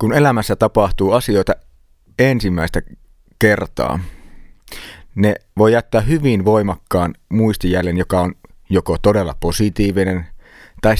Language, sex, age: Finnish, male, 30-49